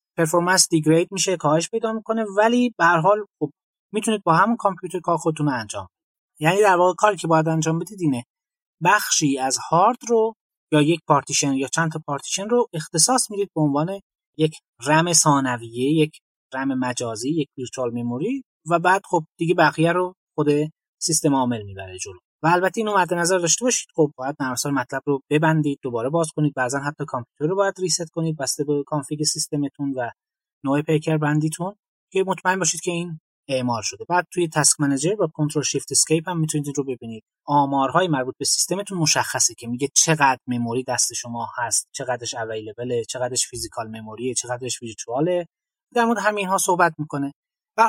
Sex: male